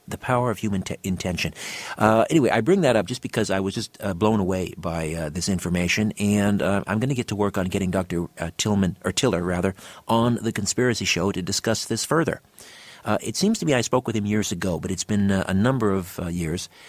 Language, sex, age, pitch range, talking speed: English, male, 50-69, 90-110 Hz, 225 wpm